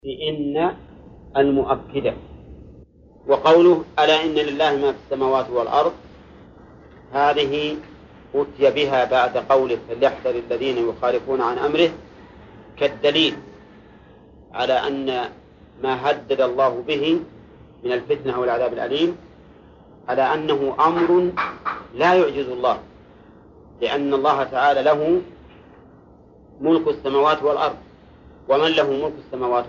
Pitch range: 130-155 Hz